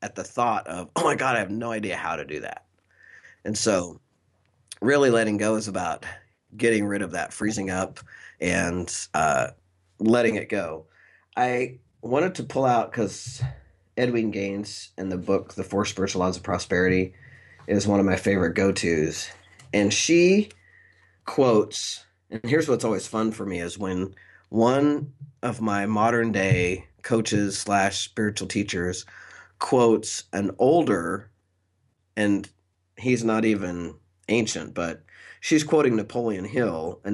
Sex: male